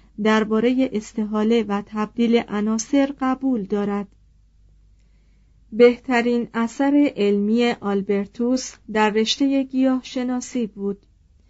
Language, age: Persian, 40-59